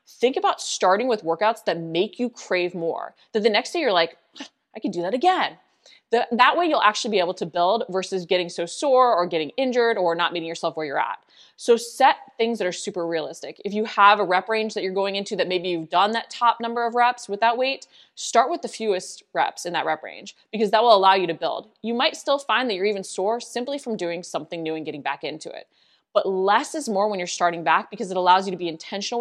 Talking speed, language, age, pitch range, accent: 250 wpm, English, 20-39, 180-235 Hz, American